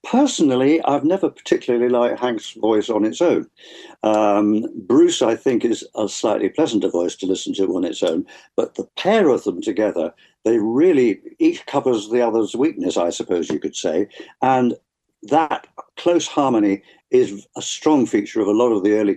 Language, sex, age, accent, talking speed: English, male, 60-79, British, 180 wpm